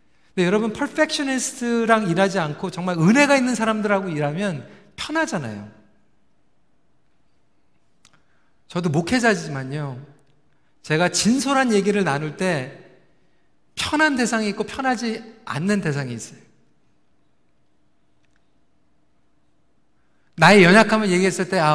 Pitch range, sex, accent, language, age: 175-270 Hz, male, native, Korean, 40-59